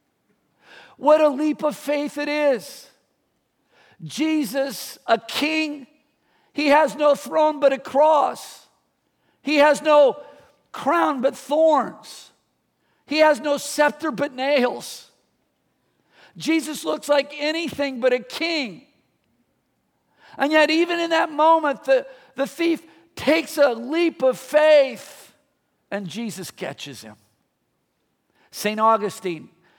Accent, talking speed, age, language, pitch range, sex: American, 115 wpm, 50-69, English, 175-290 Hz, male